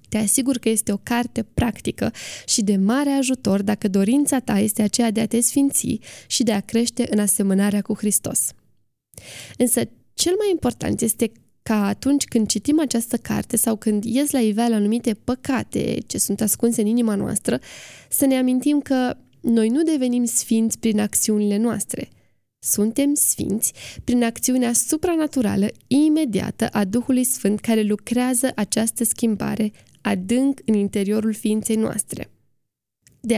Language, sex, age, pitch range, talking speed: Romanian, female, 10-29, 210-255 Hz, 145 wpm